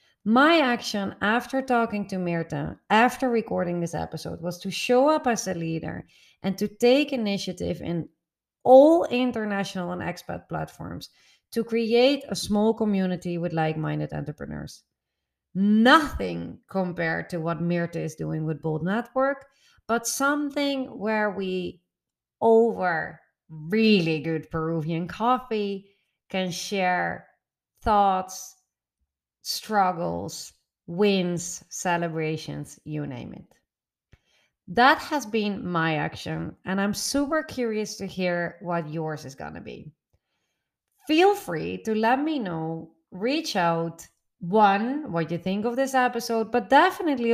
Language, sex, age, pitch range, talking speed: English, female, 30-49, 165-230 Hz, 125 wpm